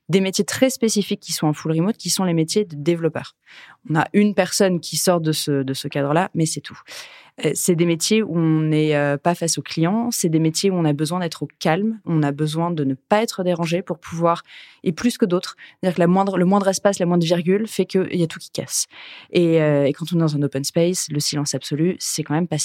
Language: French